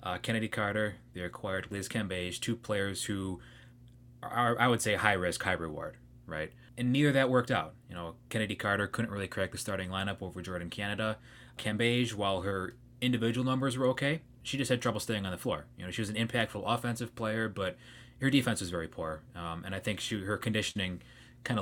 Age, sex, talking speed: 20-39, male, 210 wpm